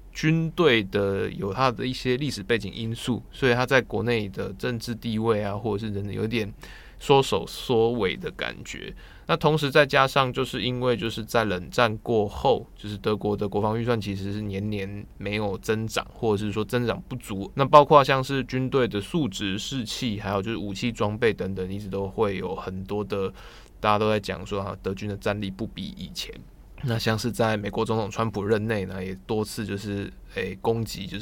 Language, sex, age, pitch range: Chinese, male, 20-39, 100-125 Hz